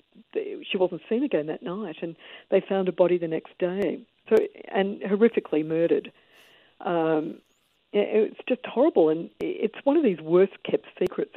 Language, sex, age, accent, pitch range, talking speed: English, female, 50-69, Australian, 165-215 Hz, 160 wpm